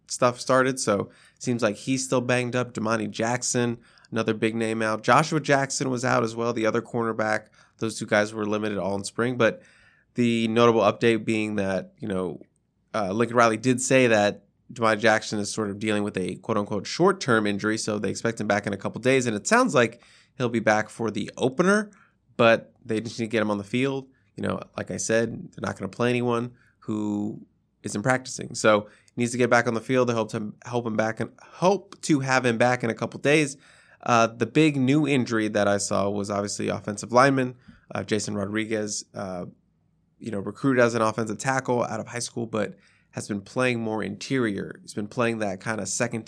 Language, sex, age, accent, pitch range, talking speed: English, male, 20-39, American, 105-125 Hz, 215 wpm